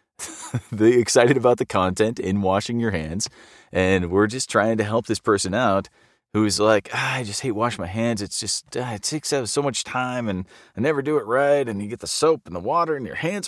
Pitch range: 90-125 Hz